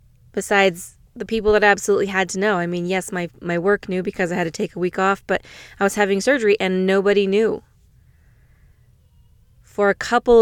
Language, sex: English, female